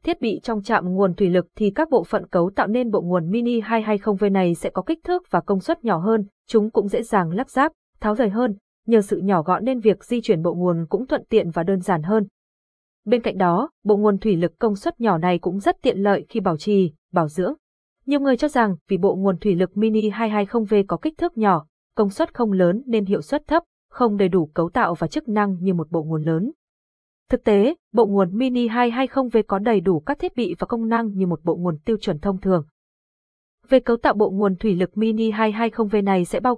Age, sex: 20-39, female